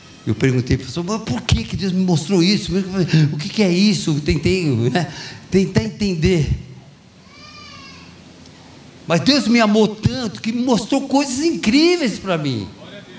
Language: Portuguese